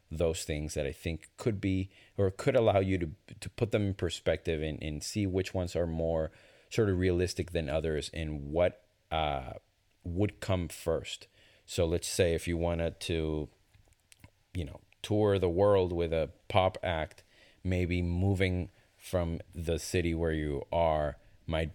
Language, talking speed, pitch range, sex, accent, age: English, 165 wpm, 80-100 Hz, male, American, 30-49